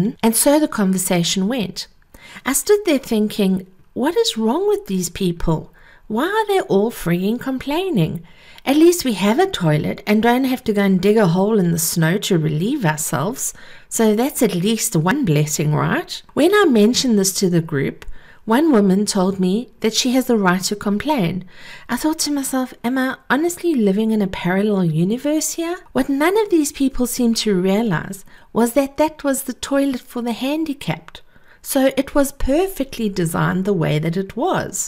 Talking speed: 185 wpm